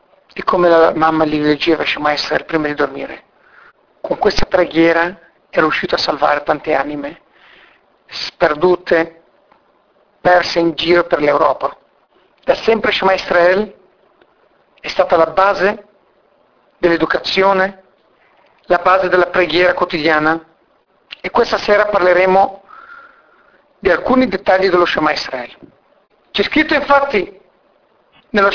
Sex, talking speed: male, 115 wpm